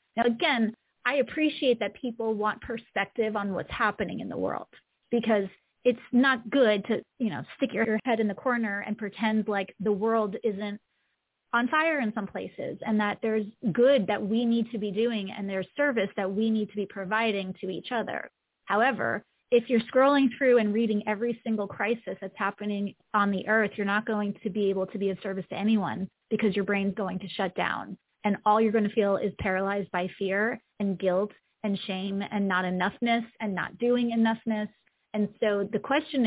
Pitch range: 200-235 Hz